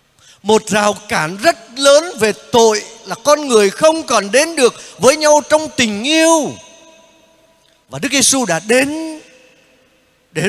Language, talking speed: Vietnamese, 145 wpm